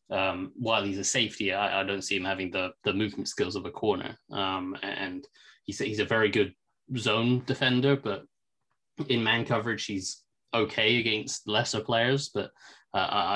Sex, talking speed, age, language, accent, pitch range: male, 170 wpm, 20-39, English, British, 95-115 Hz